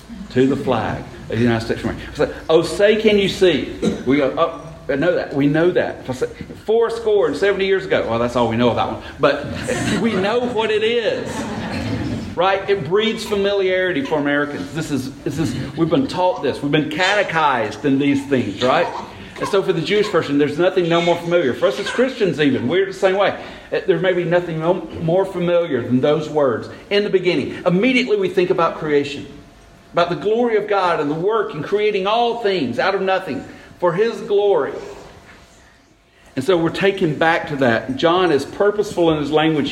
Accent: American